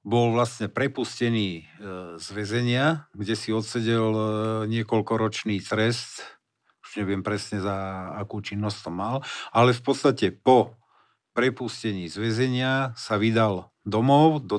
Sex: male